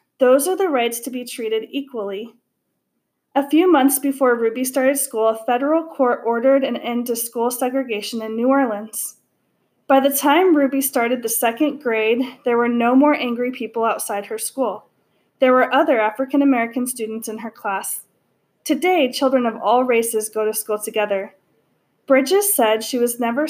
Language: English